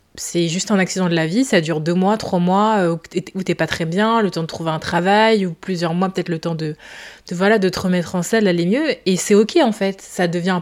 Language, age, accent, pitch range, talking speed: French, 20-39, French, 180-210 Hz, 285 wpm